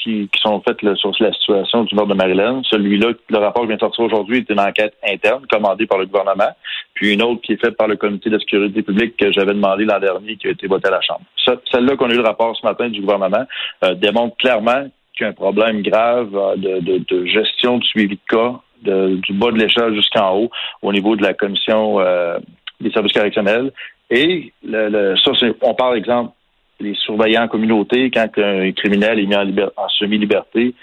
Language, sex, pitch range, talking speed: French, male, 100-115 Hz, 225 wpm